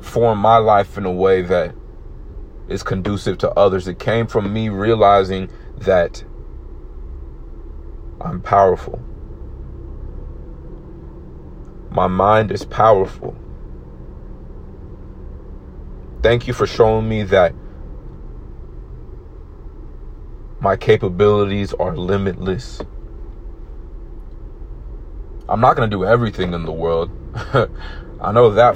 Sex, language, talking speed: male, English, 95 wpm